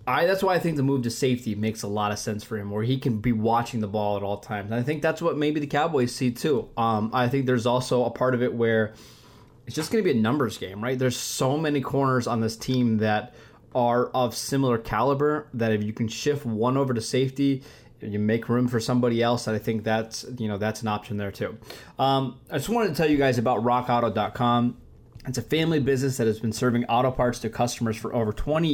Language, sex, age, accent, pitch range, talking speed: English, male, 20-39, American, 115-135 Hz, 245 wpm